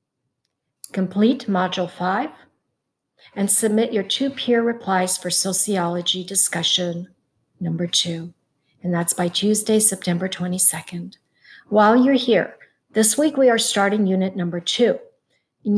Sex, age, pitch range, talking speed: female, 50-69, 180-230 Hz, 120 wpm